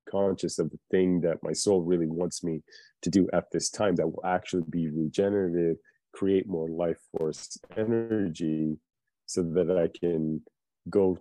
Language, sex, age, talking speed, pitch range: English, male, 30-49, 160 wpm, 85-100 Hz